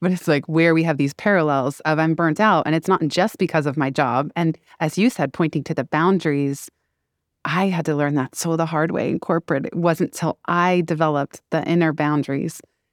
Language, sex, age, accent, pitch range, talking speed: English, female, 20-39, American, 150-175 Hz, 220 wpm